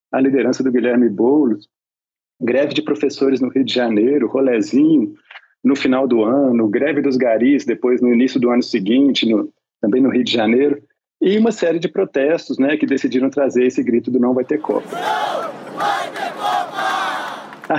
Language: Portuguese